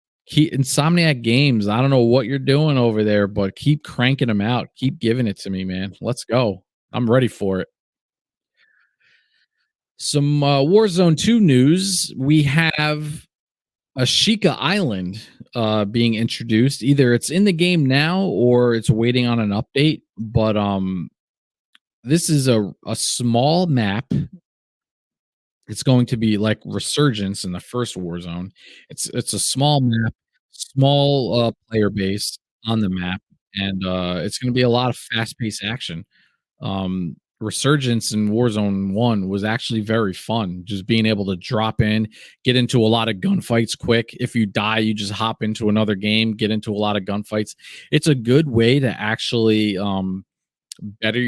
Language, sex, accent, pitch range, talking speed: English, male, American, 105-135 Hz, 165 wpm